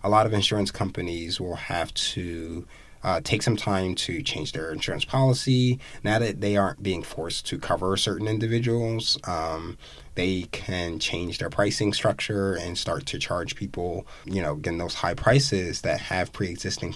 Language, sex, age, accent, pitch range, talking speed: English, male, 20-39, American, 90-120 Hz, 170 wpm